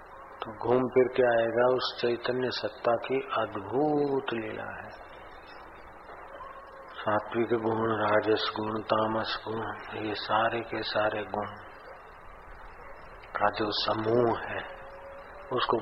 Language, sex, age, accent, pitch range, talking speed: Hindi, male, 40-59, native, 105-110 Hz, 105 wpm